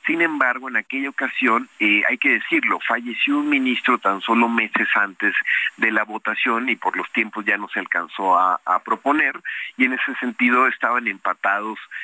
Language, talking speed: Spanish, 180 wpm